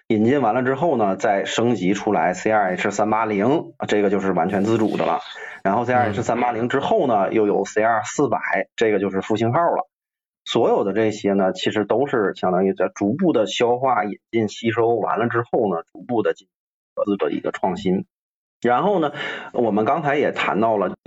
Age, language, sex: 30-49, Chinese, male